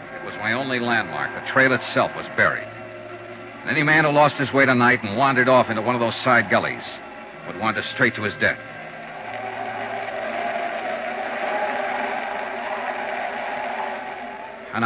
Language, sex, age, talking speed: English, male, 60-79, 130 wpm